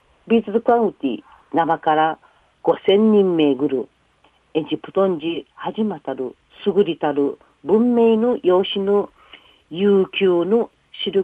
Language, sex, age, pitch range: Japanese, female, 50-69, 155-215 Hz